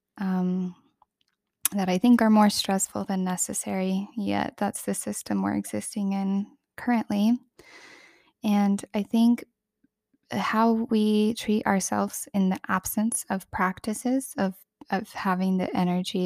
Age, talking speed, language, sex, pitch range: 10-29, 130 wpm, English, female, 185-220 Hz